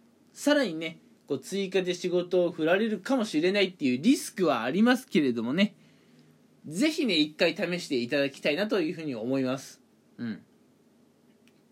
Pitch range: 160-235 Hz